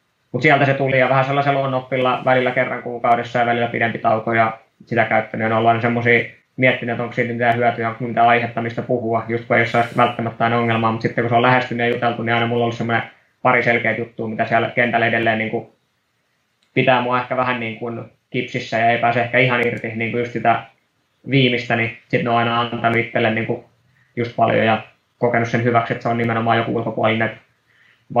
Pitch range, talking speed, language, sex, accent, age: 115-125 Hz, 205 wpm, Finnish, male, native, 20-39